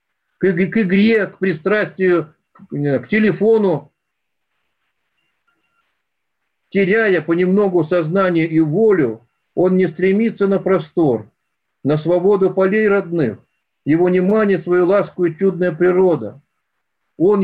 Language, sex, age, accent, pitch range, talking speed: Russian, male, 50-69, native, 160-195 Hz, 95 wpm